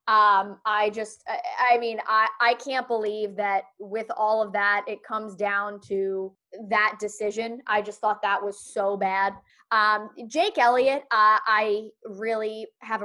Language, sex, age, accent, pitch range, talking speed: English, female, 20-39, American, 210-275 Hz, 155 wpm